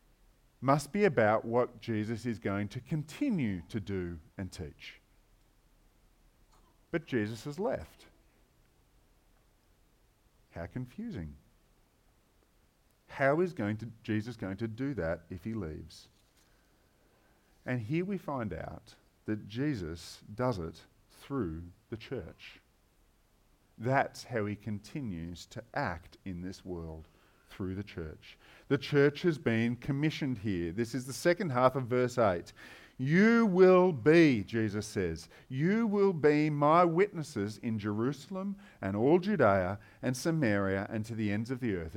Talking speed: 130 wpm